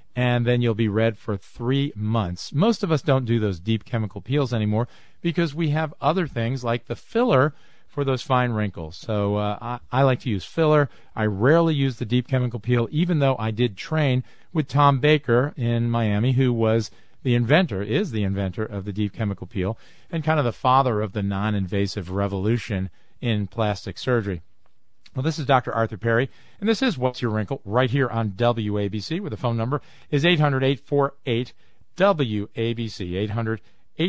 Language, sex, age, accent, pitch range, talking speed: English, male, 40-59, American, 110-145 Hz, 180 wpm